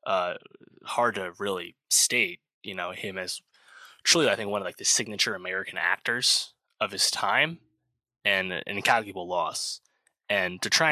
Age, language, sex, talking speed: 20-39, English, male, 160 wpm